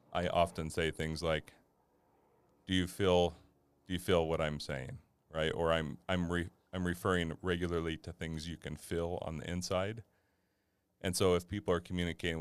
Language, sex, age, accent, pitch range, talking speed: English, male, 40-59, American, 80-90 Hz, 175 wpm